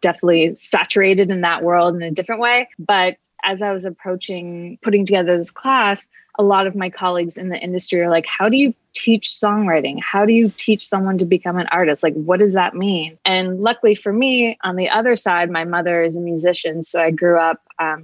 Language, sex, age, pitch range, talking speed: English, female, 20-39, 170-200 Hz, 215 wpm